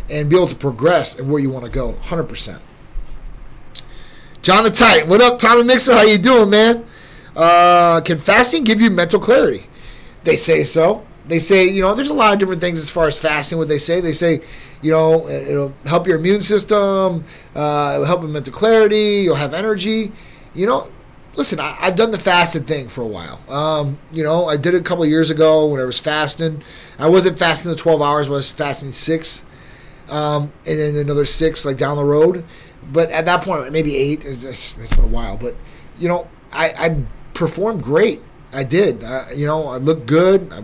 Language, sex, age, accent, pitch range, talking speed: English, male, 30-49, American, 140-180 Hz, 215 wpm